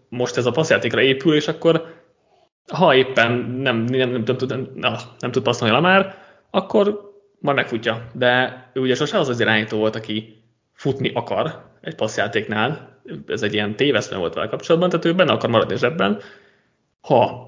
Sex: male